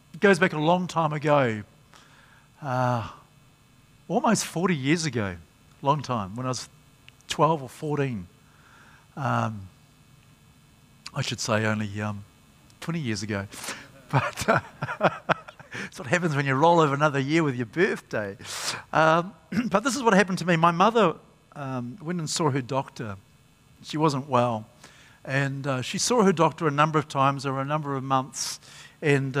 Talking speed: 160 wpm